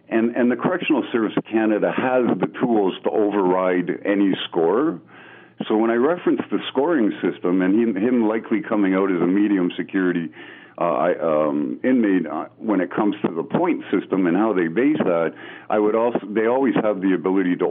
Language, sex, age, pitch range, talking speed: English, male, 50-69, 90-110 Hz, 195 wpm